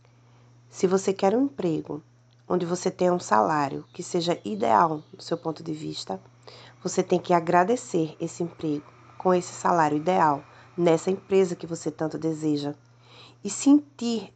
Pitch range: 135-195 Hz